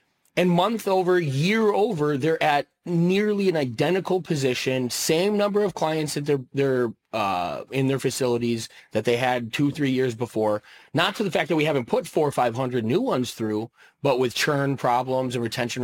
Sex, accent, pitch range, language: male, American, 130-180 Hz, English